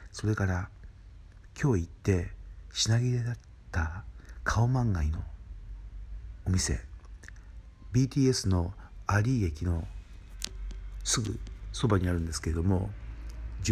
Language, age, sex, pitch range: Japanese, 60-79, male, 90-115 Hz